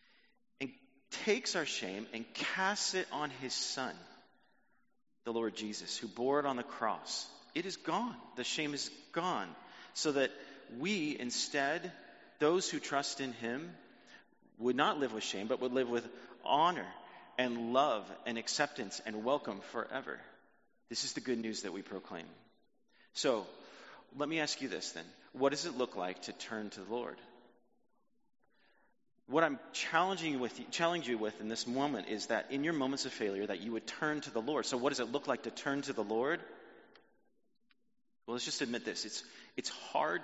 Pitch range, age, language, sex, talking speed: 115-175 Hz, 40-59, English, male, 180 wpm